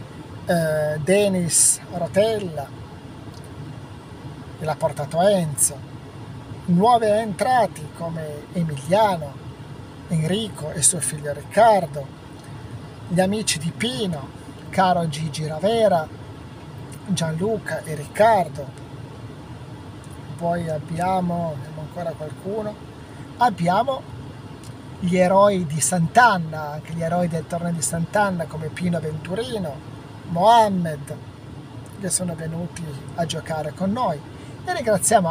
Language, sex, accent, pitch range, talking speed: Italian, male, native, 140-180 Hz, 90 wpm